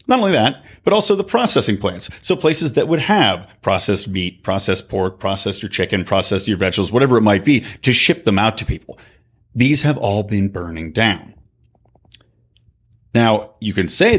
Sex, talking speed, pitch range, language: male, 180 wpm, 100-135 Hz, English